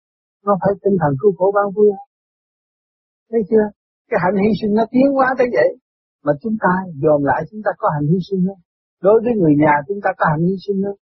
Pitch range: 150-205 Hz